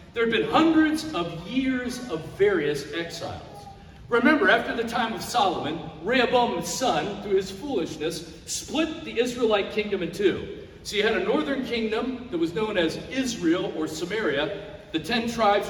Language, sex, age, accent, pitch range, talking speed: English, male, 50-69, American, 170-260 Hz, 160 wpm